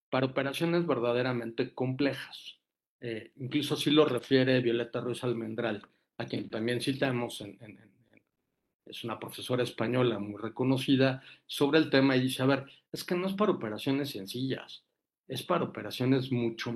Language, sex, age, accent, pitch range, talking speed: Spanish, male, 50-69, Mexican, 120-150 Hz, 160 wpm